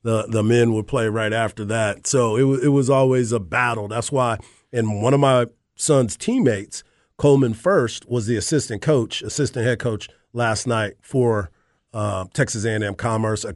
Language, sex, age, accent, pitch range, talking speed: English, male, 40-59, American, 115-140 Hz, 180 wpm